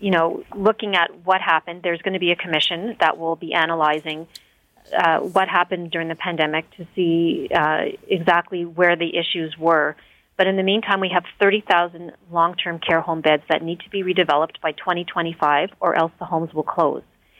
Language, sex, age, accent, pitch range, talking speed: English, female, 30-49, American, 165-185 Hz, 185 wpm